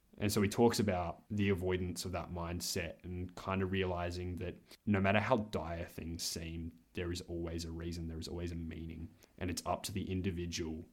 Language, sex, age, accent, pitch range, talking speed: English, male, 20-39, Australian, 85-100 Hz, 205 wpm